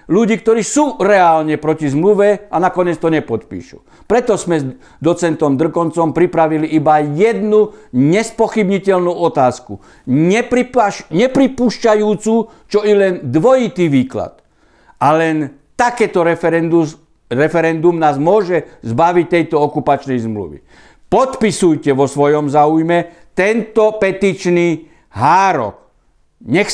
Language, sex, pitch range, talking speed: Slovak, male, 140-195 Hz, 105 wpm